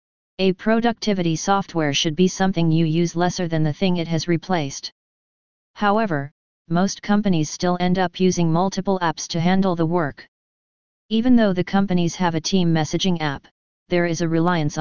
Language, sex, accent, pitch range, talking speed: English, female, American, 165-190 Hz, 165 wpm